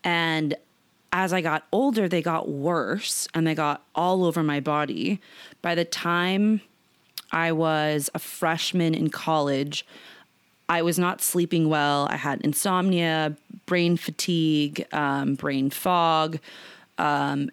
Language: English